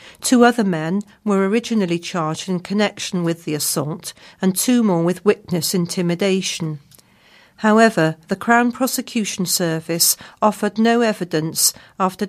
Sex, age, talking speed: female, 50-69, 125 wpm